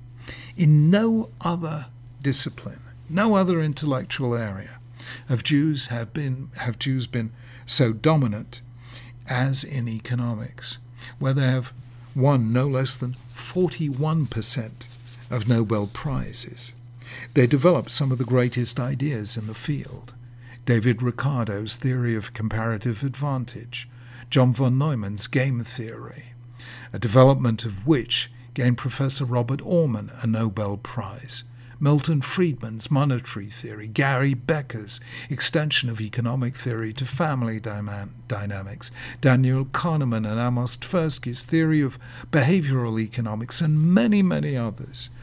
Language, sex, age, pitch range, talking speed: English, male, 50-69, 120-140 Hz, 120 wpm